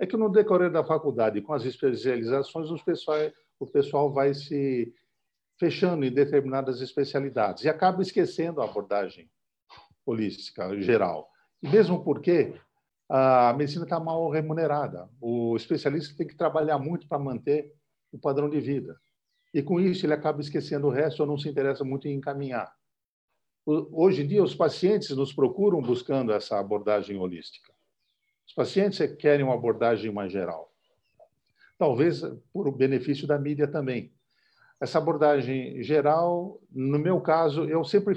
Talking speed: 145 wpm